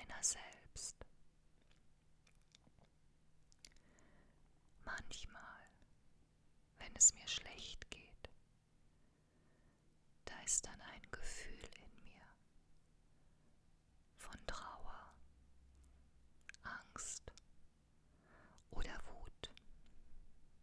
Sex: female